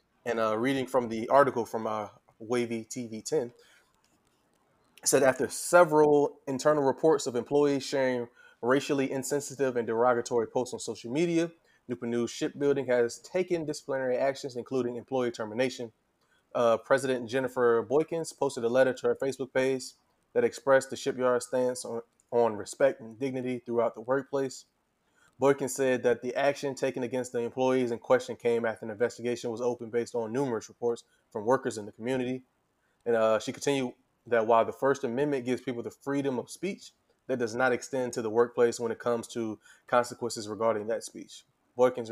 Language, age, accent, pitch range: English, 20-39, American, 120-135 Hz